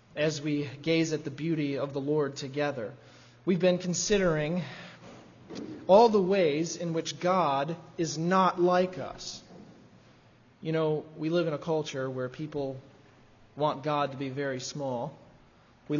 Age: 20-39